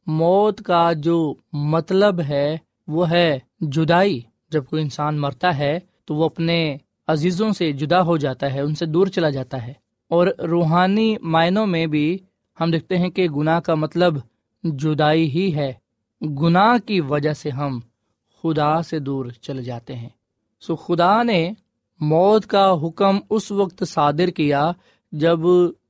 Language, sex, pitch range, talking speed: Urdu, male, 145-175 Hz, 150 wpm